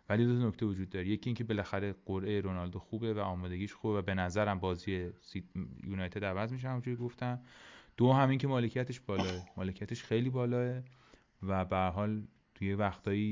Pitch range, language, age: 95-115 Hz, Persian, 30-49